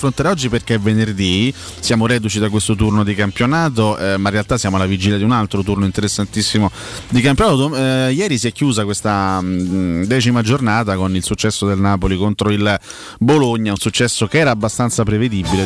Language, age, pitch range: Italian, 30-49, 100-115 Hz